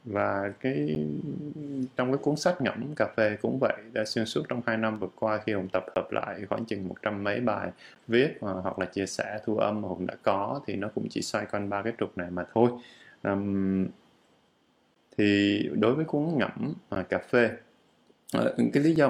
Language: Vietnamese